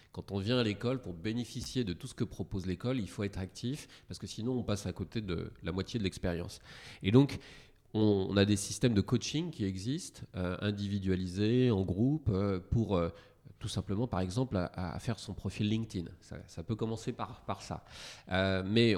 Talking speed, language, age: 190 wpm, French, 30-49